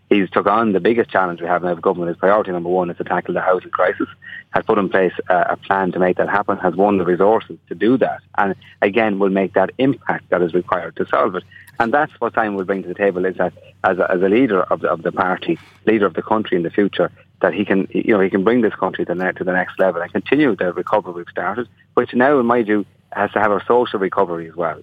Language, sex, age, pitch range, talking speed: English, male, 30-49, 90-110 Hz, 270 wpm